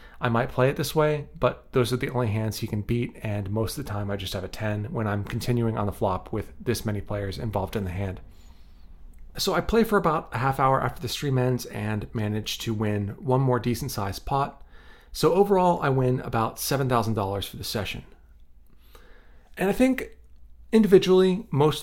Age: 30-49